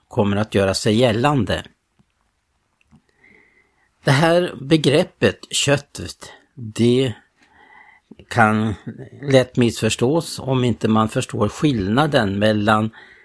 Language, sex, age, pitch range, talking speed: Swedish, male, 60-79, 105-130 Hz, 85 wpm